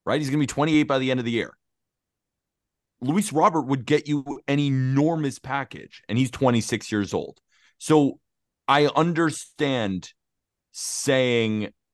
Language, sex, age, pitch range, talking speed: English, male, 30-49, 110-145 Hz, 145 wpm